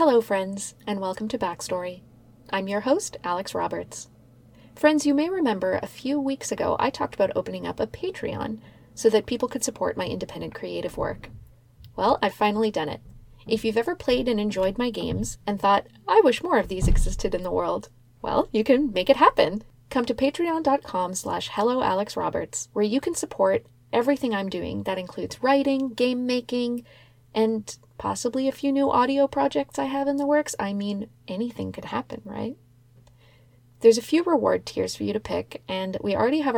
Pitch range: 175-250 Hz